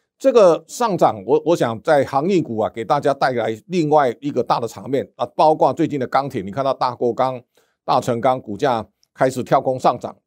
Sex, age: male, 50-69